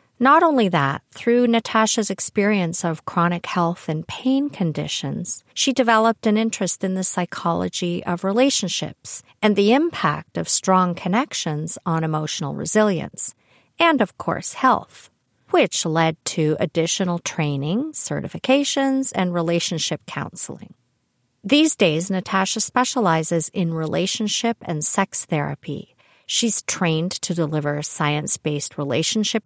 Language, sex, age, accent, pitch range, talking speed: English, female, 50-69, American, 165-225 Hz, 120 wpm